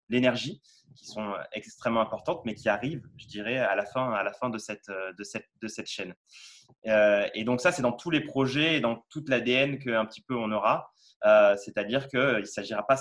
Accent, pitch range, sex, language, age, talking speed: French, 120-155 Hz, male, French, 20-39, 210 wpm